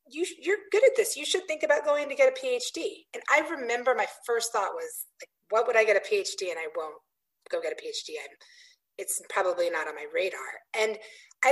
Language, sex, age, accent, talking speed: English, female, 30-49, American, 225 wpm